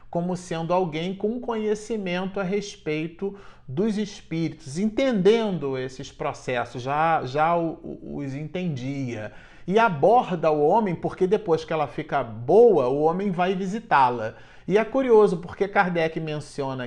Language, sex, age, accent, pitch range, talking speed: Portuguese, male, 40-59, Brazilian, 155-200 Hz, 130 wpm